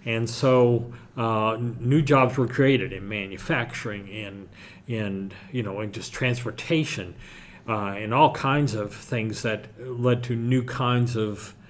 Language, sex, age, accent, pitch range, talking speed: English, male, 50-69, American, 105-125 Hz, 145 wpm